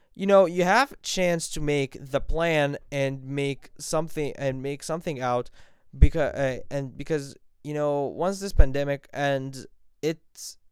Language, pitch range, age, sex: English, 130-155 Hz, 20-39, male